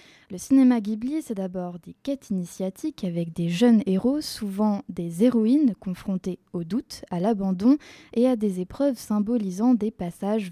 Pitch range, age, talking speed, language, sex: 185-245 Hz, 20-39, 155 wpm, French, female